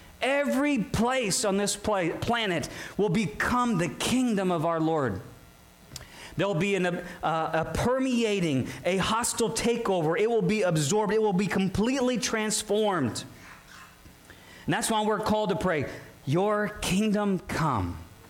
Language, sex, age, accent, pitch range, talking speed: English, male, 40-59, American, 140-200 Hz, 135 wpm